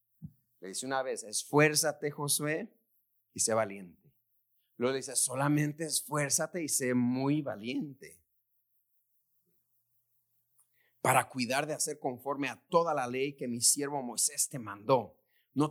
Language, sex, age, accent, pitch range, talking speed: Spanish, male, 40-59, Mexican, 120-175 Hz, 120 wpm